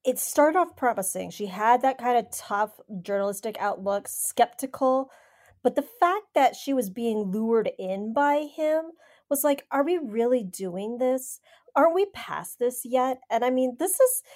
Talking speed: 170 wpm